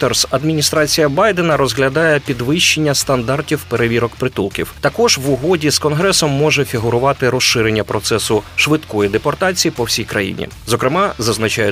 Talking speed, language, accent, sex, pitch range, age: 120 wpm, Ukrainian, native, male, 115-150 Hz, 30-49